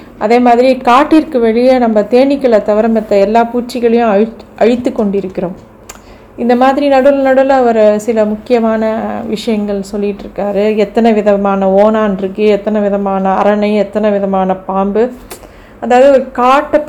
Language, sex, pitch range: Tamil, female, 205-250 Hz